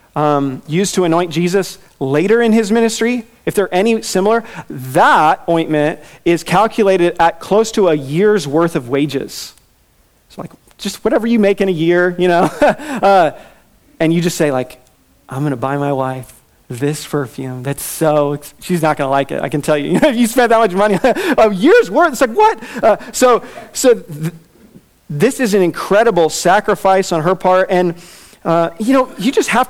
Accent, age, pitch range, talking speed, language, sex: American, 40-59, 150-200 Hz, 190 wpm, English, male